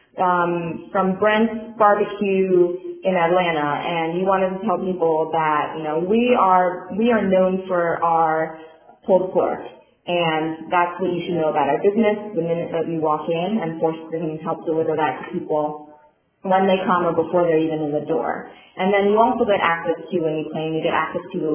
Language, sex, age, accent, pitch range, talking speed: English, female, 30-49, American, 160-190 Hz, 200 wpm